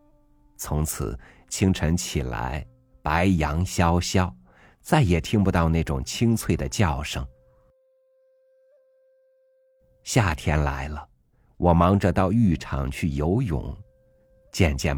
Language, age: Chinese, 50-69